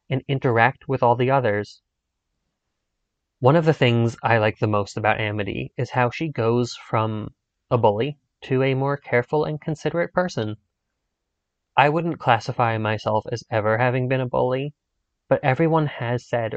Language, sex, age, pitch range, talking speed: English, male, 20-39, 110-150 Hz, 160 wpm